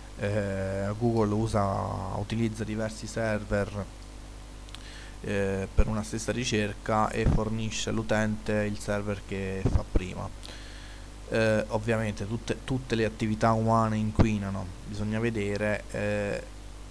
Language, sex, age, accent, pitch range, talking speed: Italian, male, 20-39, native, 105-115 Hz, 100 wpm